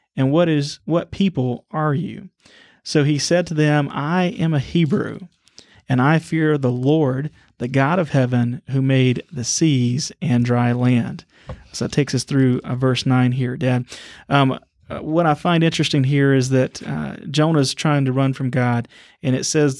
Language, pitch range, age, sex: English, 130-155 Hz, 30-49, male